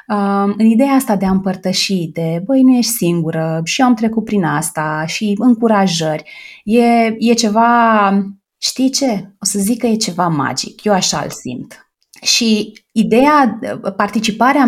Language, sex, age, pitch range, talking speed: Romanian, female, 20-39, 165-220 Hz, 155 wpm